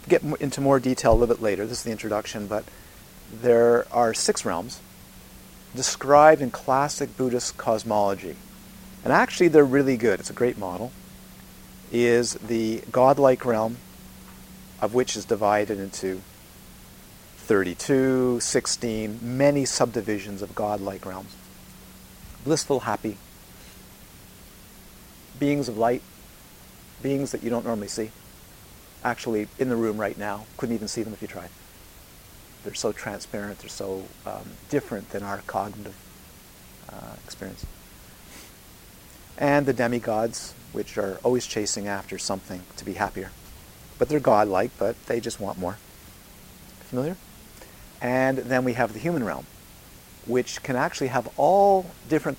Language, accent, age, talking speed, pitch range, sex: English, American, 50-69, 135 wpm, 100-130 Hz, male